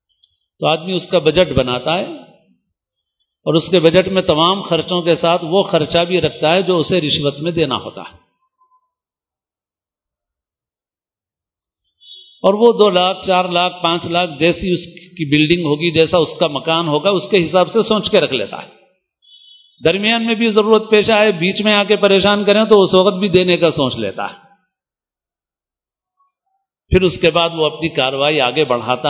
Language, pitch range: Urdu, 150-195 Hz